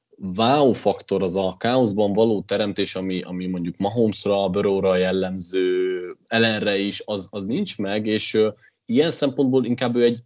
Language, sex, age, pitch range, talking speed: Hungarian, male, 30-49, 95-115 Hz, 150 wpm